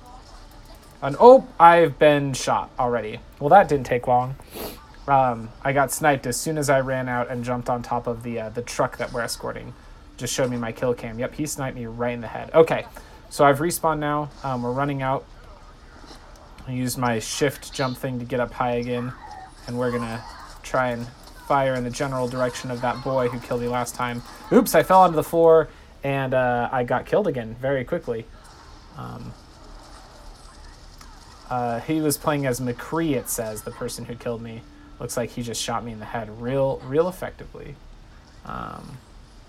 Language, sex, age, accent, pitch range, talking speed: English, male, 30-49, American, 120-145 Hz, 195 wpm